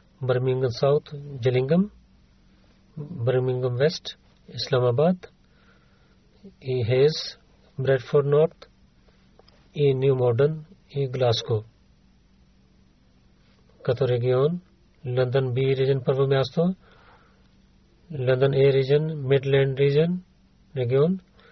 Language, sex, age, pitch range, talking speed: Bulgarian, male, 40-59, 125-155 Hz, 75 wpm